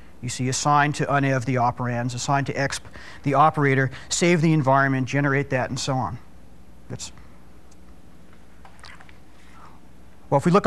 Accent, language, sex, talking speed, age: American, English, male, 140 wpm, 40-59